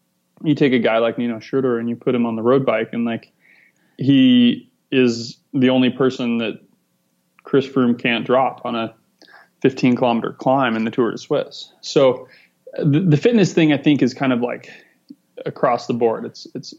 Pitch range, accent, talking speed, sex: 120-140 Hz, American, 190 wpm, male